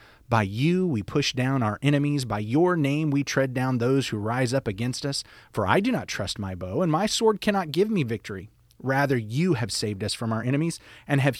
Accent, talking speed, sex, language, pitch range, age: American, 225 wpm, male, English, 110-155 Hz, 30-49